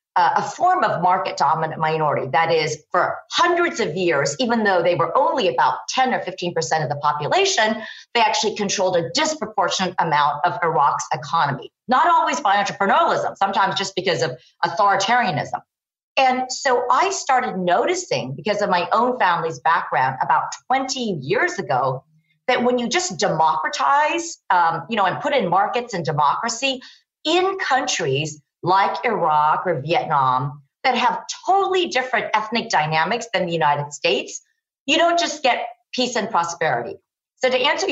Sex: female